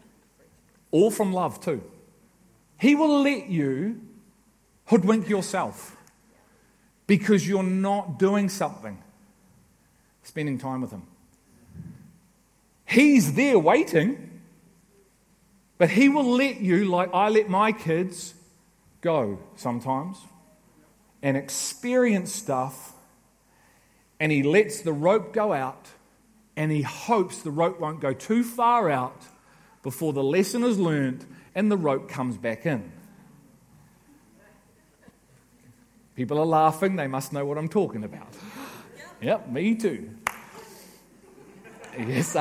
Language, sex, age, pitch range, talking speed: English, male, 40-59, 145-210 Hz, 110 wpm